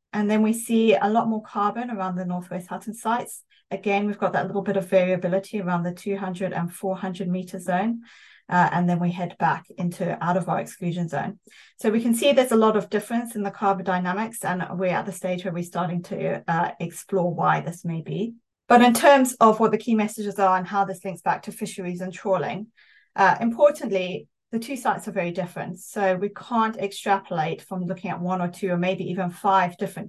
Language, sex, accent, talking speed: English, female, British, 215 wpm